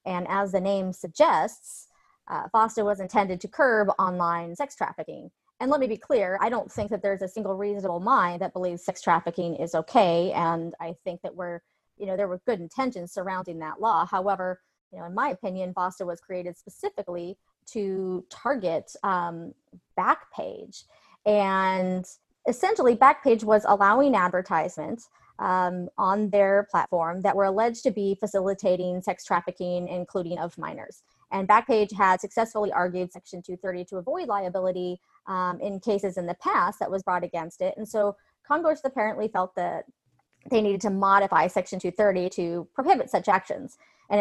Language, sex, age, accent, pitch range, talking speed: English, female, 30-49, American, 180-215 Hz, 165 wpm